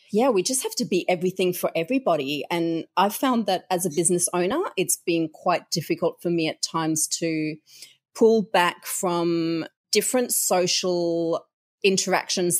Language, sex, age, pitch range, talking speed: English, female, 30-49, 170-215 Hz, 150 wpm